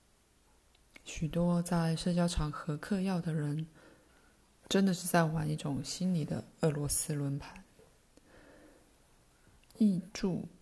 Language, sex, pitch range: Chinese, female, 150-180 Hz